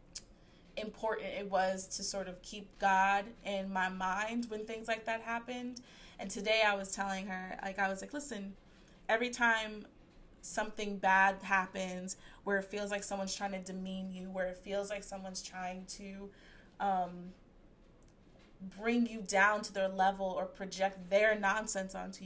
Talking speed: 160 wpm